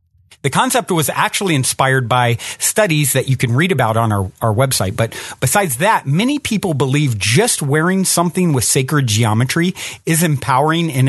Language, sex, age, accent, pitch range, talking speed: English, male, 40-59, American, 115-165 Hz, 170 wpm